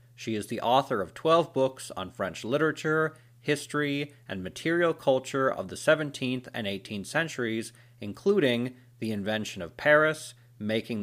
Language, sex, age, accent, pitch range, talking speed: English, male, 30-49, American, 110-145 Hz, 140 wpm